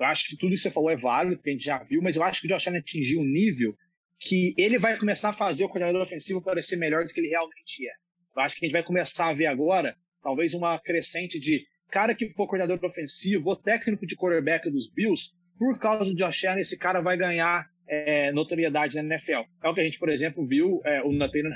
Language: Portuguese